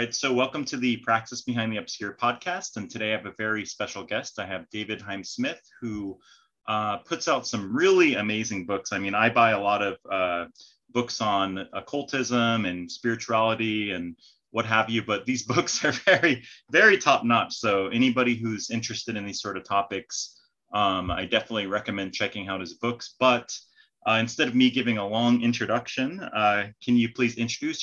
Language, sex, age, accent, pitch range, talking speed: English, male, 30-49, American, 100-125 Hz, 185 wpm